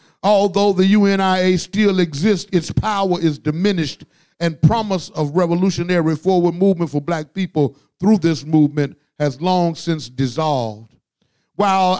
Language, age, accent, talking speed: English, 50-69, American, 130 wpm